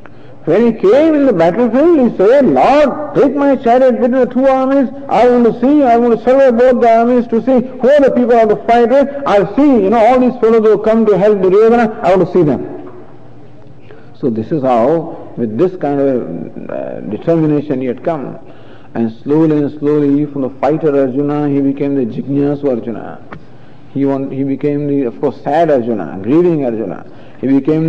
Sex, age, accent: male, 50-69, Indian